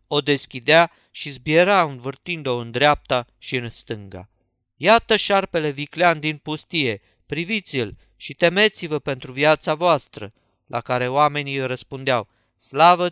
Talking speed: 125 wpm